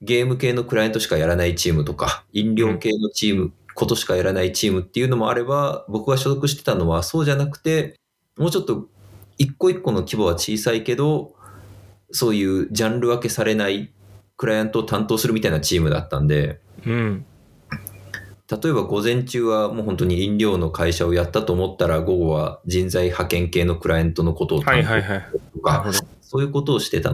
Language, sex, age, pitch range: Japanese, male, 20-39, 95-135 Hz